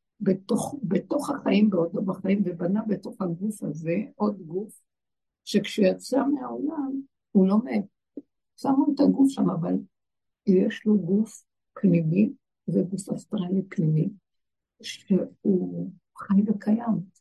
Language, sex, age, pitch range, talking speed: Hebrew, female, 60-79, 180-250 Hz, 110 wpm